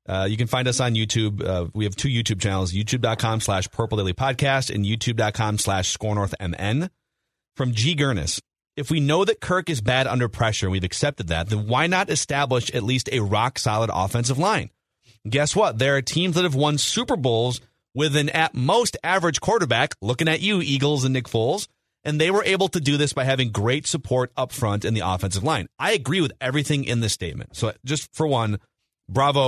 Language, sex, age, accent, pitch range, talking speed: English, male, 30-49, American, 105-140 Hz, 210 wpm